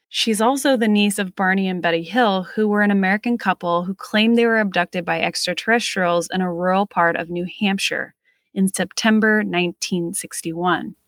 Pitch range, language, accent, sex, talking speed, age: 180-230 Hz, English, American, female, 170 wpm, 20-39